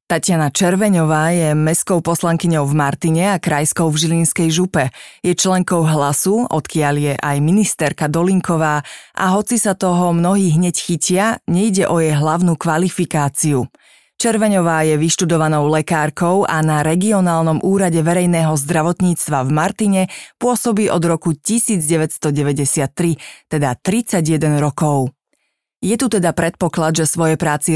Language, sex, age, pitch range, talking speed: Slovak, female, 30-49, 155-185 Hz, 125 wpm